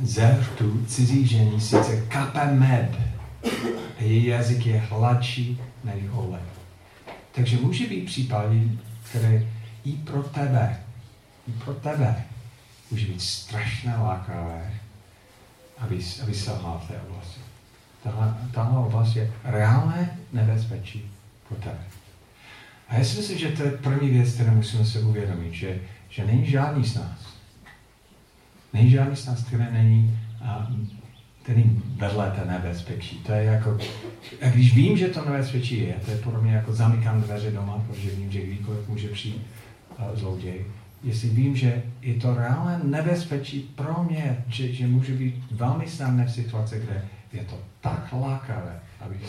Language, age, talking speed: Czech, 50-69, 140 wpm